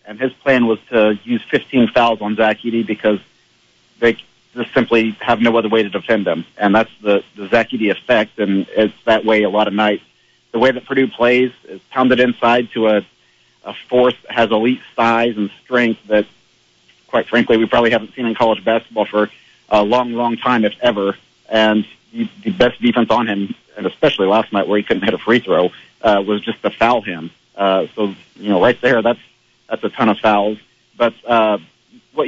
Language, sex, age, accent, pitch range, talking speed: English, male, 40-59, American, 105-120 Hz, 205 wpm